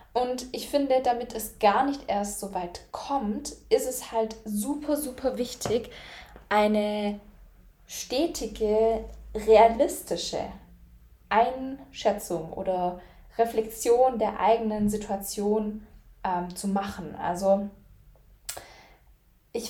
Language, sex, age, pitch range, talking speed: German, female, 10-29, 195-250 Hz, 95 wpm